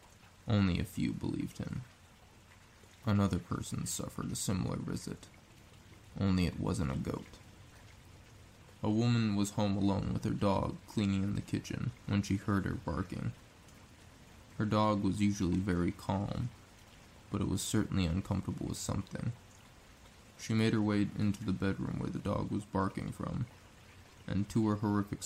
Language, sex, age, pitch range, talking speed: English, male, 20-39, 95-105 Hz, 150 wpm